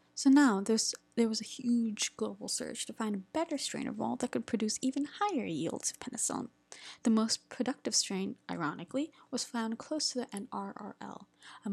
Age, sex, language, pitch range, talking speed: 20-39, female, English, 195-255 Hz, 180 wpm